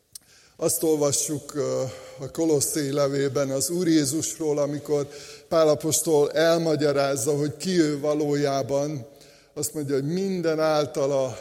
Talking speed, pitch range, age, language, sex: 105 wpm, 135-155 Hz, 60-79, Hungarian, male